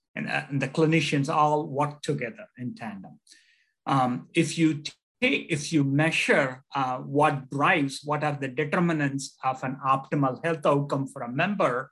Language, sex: English, male